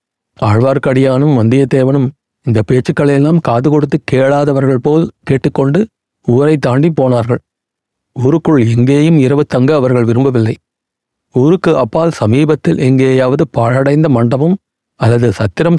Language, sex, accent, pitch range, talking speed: Tamil, male, native, 125-145 Hz, 100 wpm